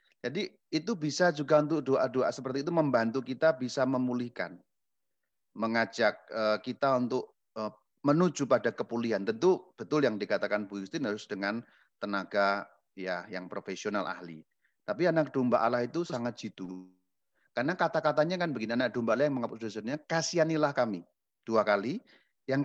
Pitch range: 125-160 Hz